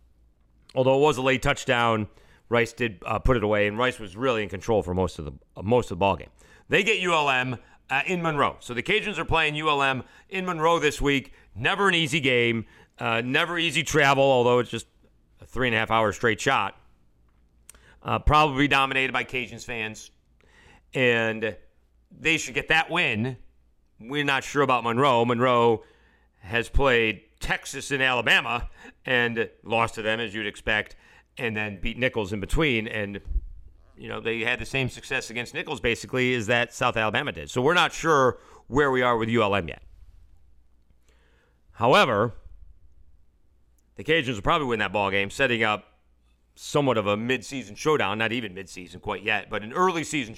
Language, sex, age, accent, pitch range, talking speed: English, male, 40-59, American, 100-135 Hz, 175 wpm